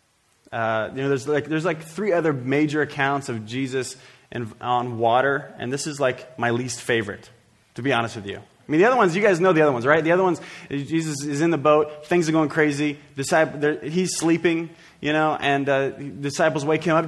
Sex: male